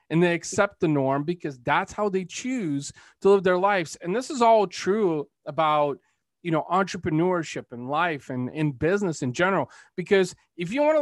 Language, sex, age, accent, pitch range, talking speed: English, male, 30-49, American, 145-200 Hz, 190 wpm